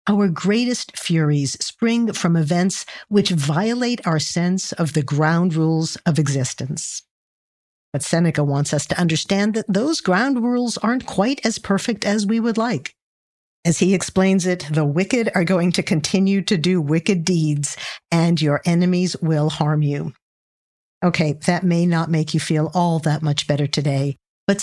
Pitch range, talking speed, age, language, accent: 155-205 Hz, 165 wpm, 50-69, English, American